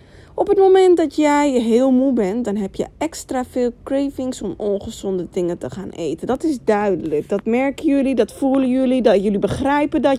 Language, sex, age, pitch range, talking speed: Dutch, female, 20-39, 210-290 Hz, 195 wpm